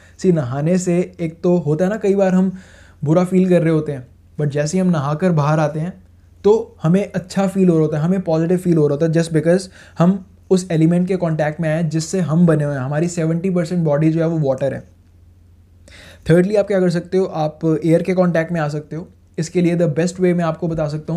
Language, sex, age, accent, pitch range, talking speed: Hindi, male, 20-39, native, 150-180 Hz, 245 wpm